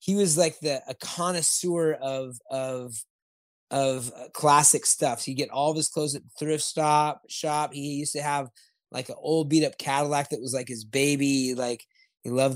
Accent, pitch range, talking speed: American, 130-155 Hz, 190 wpm